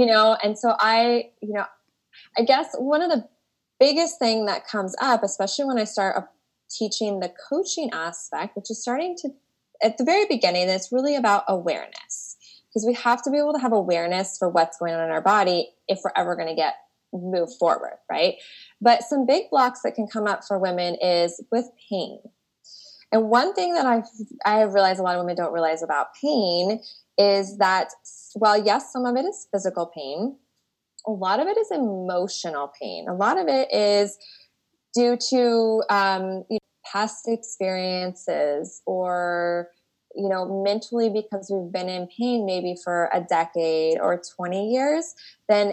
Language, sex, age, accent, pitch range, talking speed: English, female, 20-39, American, 185-245 Hz, 180 wpm